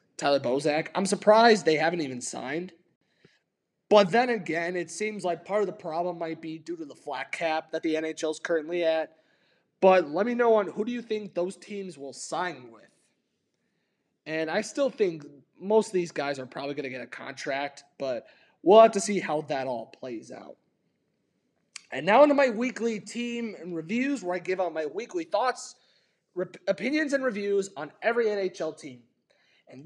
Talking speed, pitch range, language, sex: 185 wpm, 165-235 Hz, English, male